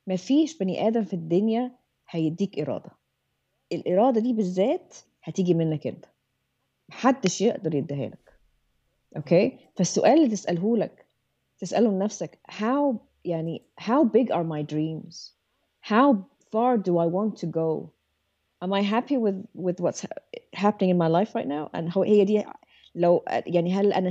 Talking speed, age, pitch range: 145 wpm, 30-49, 175-230 Hz